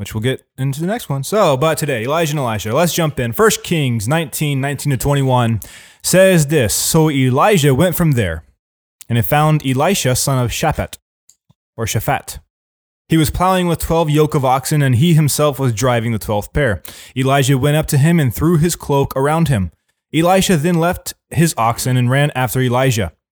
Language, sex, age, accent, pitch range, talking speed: English, male, 20-39, American, 120-160 Hz, 190 wpm